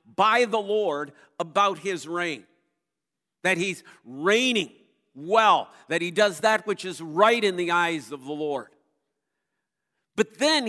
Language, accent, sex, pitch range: English, American, male, 180-235 Hz